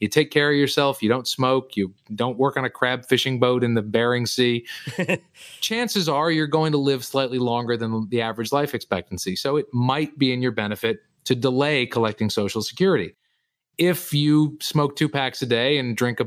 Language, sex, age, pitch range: English, male, 30-49, 115-150 Hz